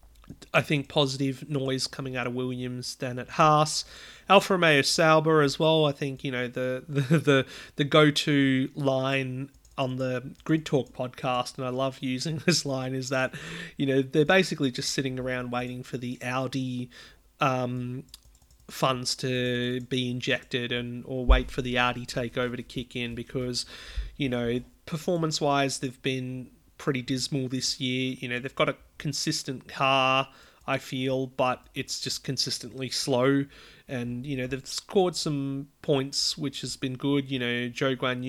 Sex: male